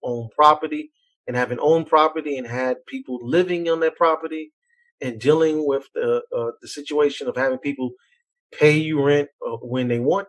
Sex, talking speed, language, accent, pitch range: male, 175 wpm, English, American, 130-180 Hz